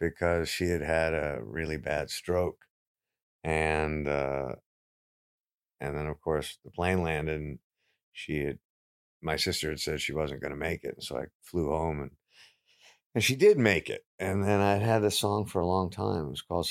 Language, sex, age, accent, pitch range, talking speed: English, male, 50-69, American, 80-95 Hz, 195 wpm